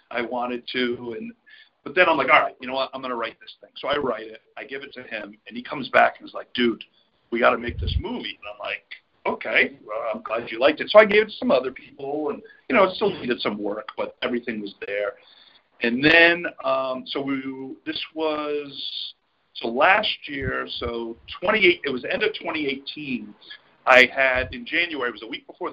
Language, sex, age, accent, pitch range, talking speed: English, male, 50-69, American, 120-185 Hz, 230 wpm